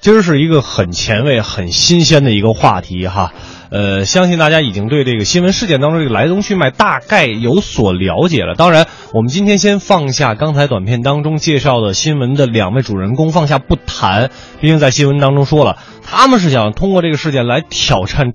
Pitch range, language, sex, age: 110-175 Hz, Chinese, male, 20-39